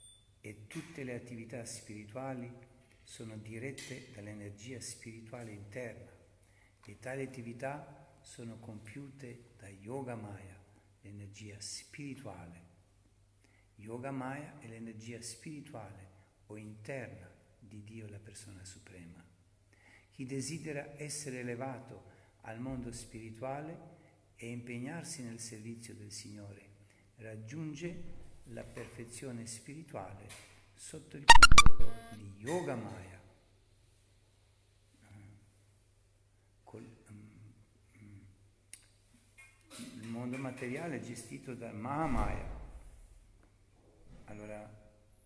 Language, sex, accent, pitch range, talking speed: Italian, male, native, 100-125 Hz, 85 wpm